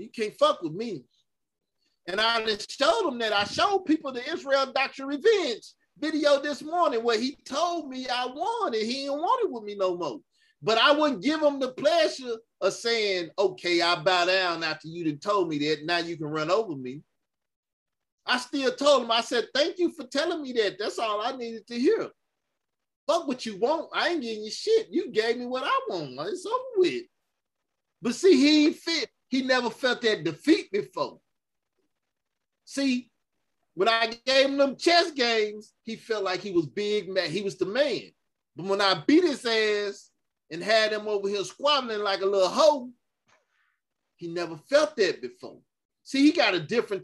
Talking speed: 195 wpm